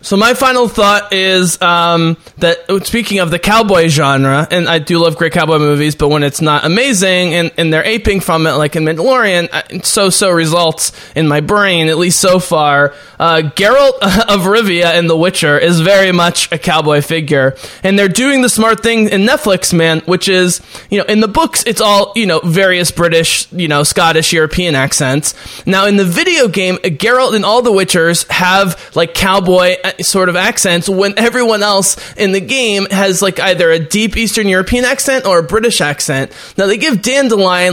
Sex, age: male, 20-39